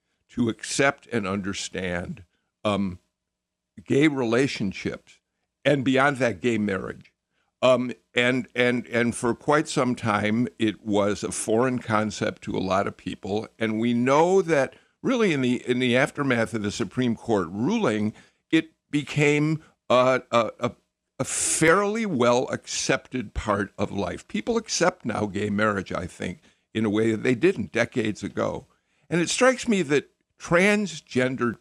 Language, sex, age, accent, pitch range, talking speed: English, male, 60-79, American, 105-140 Hz, 145 wpm